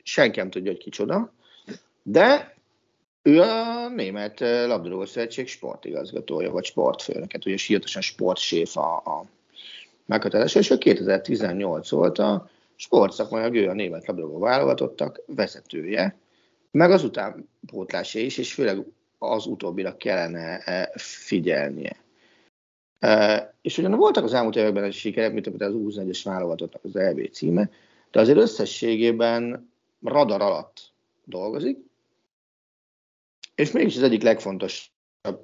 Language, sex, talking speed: Hungarian, male, 115 wpm